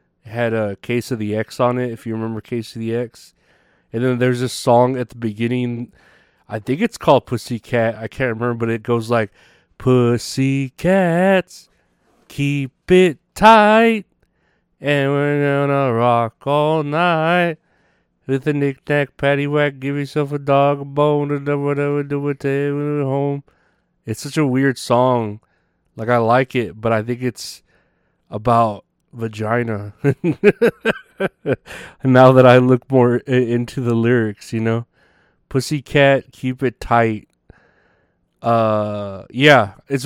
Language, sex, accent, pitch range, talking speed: English, male, American, 115-145 Hz, 145 wpm